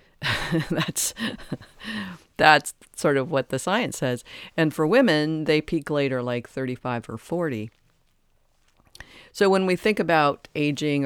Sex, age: female, 50-69